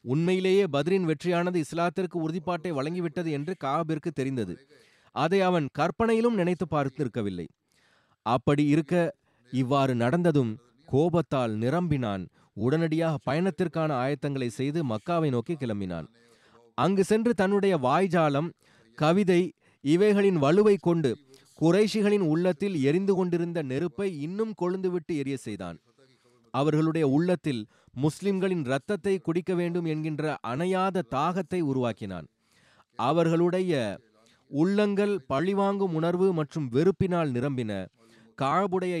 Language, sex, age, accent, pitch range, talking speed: Tamil, male, 30-49, native, 135-180 Hz, 95 wpm